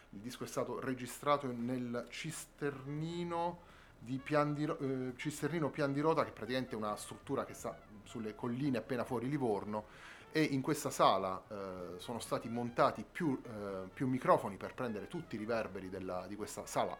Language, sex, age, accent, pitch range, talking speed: Italian, male, 30-49, native, 105-140 Hz, 175 wpm